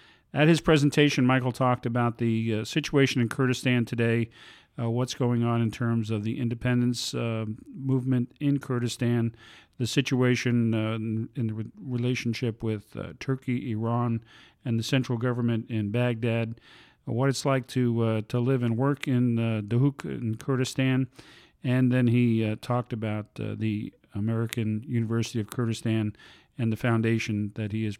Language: English